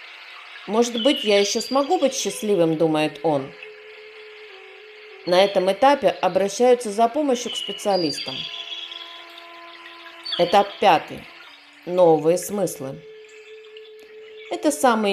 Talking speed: 90 wpm